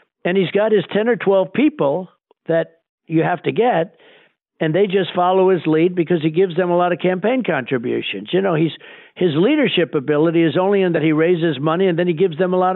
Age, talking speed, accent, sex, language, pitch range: 60-79, 225 wpm, American, male, English, 160-195 Hz